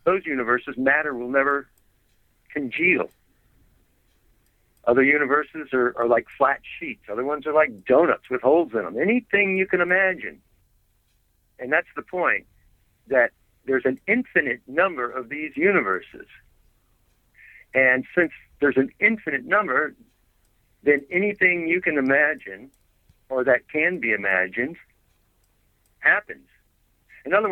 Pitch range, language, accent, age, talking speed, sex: 110-150 Hz, English, American, 60-79, 125 wpm, male